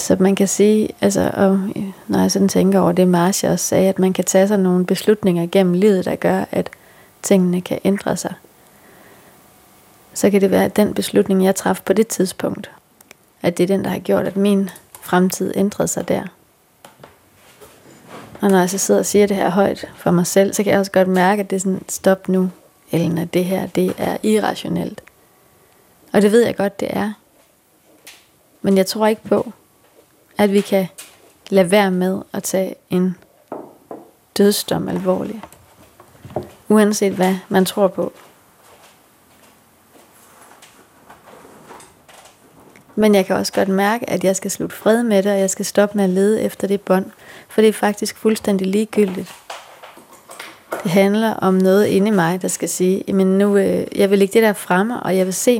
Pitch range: 185-205 Hz